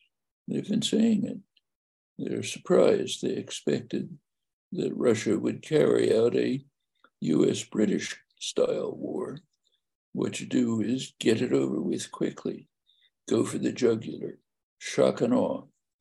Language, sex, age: English, male, 60-79